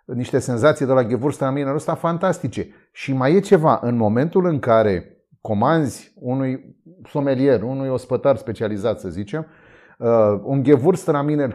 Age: 30-49